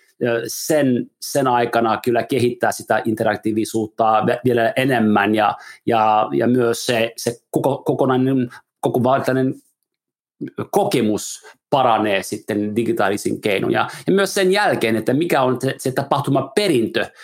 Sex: male